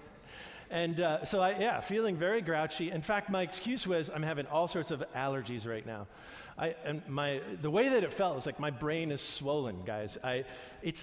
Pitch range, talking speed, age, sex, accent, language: 145-195 Hz, 205 wpm, 50-69, male, American, English